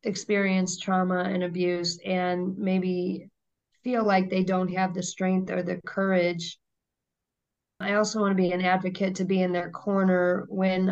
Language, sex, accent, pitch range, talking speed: English, female, American, 180-205 Hz, 160 wpm